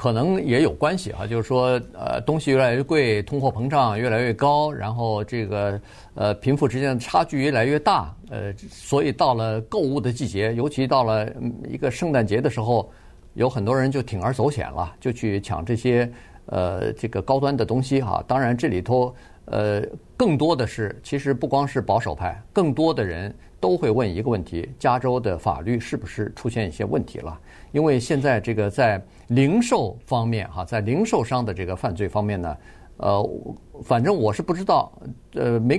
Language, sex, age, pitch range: Chinese, male, 50-69, 105-140 Hz